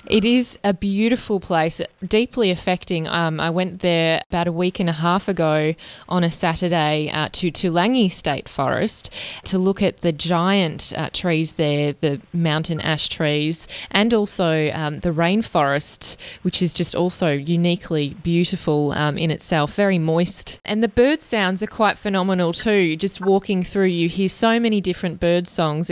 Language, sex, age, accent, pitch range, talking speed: English, female, 20-39, Australian, 170-200 Hz, 165 wpm